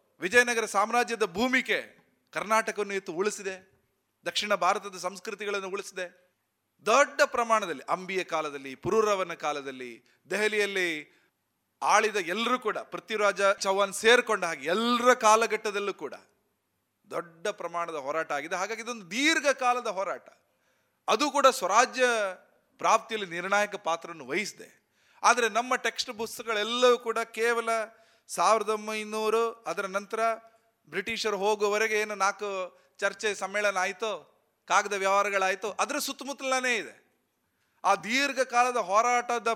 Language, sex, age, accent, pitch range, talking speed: Kannada, male, 30-49, native, 185-230 Hz, 100 wpm